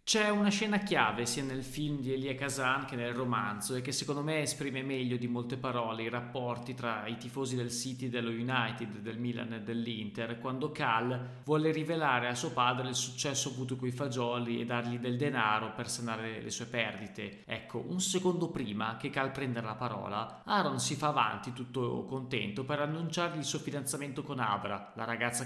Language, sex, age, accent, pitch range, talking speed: Italian, male, 20-39, native, 120-140 Hz, 190 wpm